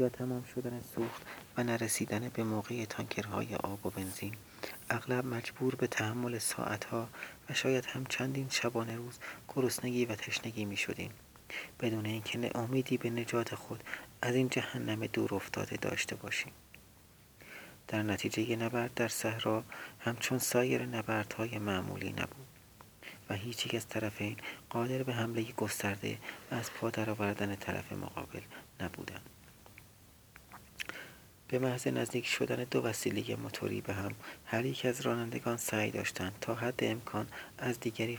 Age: 40-59